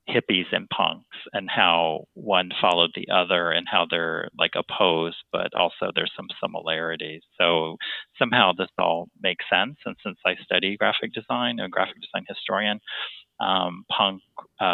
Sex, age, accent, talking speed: male, 40-59, American, 155 wpm